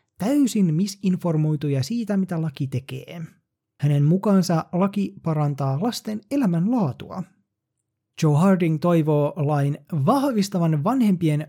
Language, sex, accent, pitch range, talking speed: Finnish, male, native, 135-185 Hz, 100 wpm